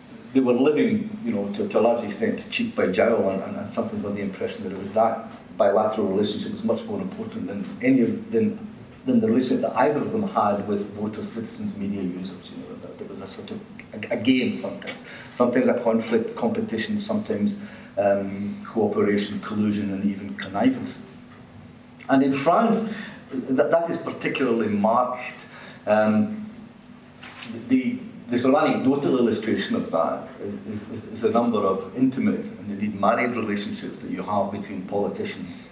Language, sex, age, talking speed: English, male, 40-59, 170 wpm